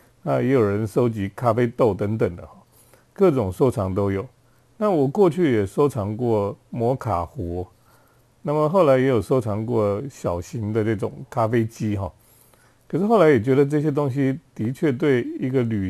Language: Chinese